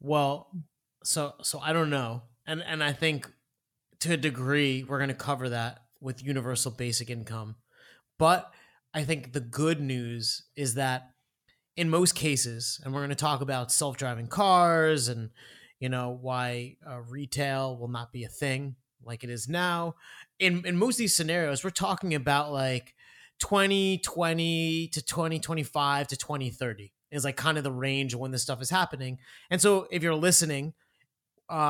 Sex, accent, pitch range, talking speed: male, American, 130-165 Hz, 165 wpm